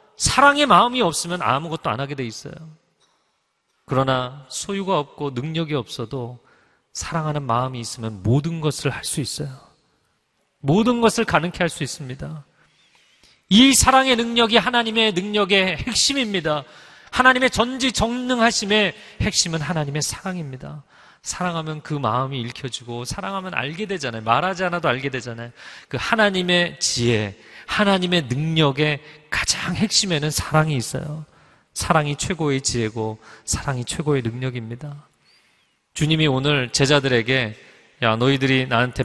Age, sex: 40-59, male